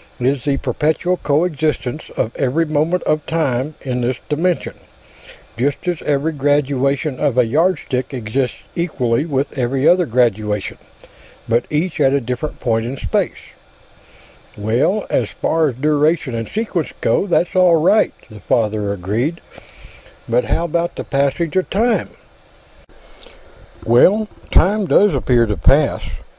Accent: American